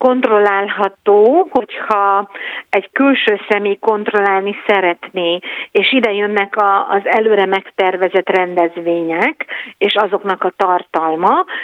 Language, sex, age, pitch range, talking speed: Hungarian, female, 50-69, 180-215 Hz, 95 wpm